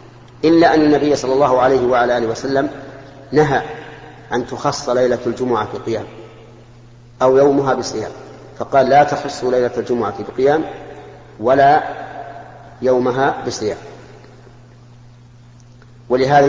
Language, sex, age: Arabic, male, 40-59